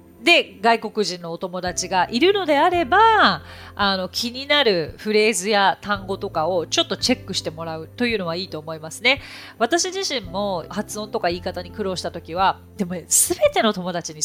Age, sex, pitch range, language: 30-49, female, 170-255 Hz, Japanese